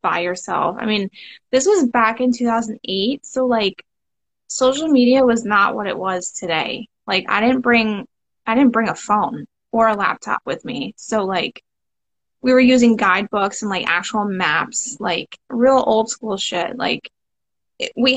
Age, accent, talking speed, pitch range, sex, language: 10-29, American, 165 wpm, 205-245 Hz, female, English